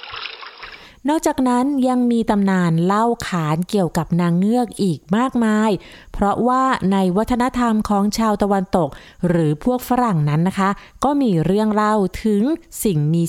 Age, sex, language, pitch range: 20-39, female, Thai, 175-245 Hz